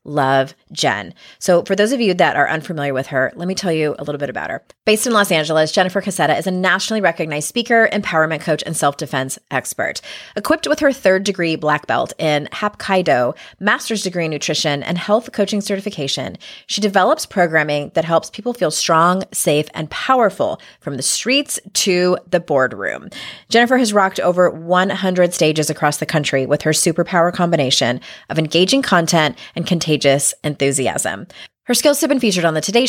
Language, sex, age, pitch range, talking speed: English, female, 30-49, 155-205 Hz, 180 wpm